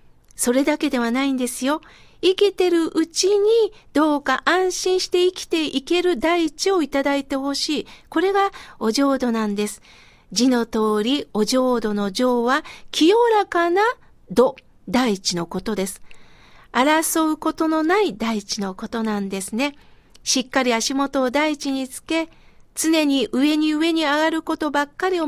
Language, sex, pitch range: Japanese, female, 250-330 Hz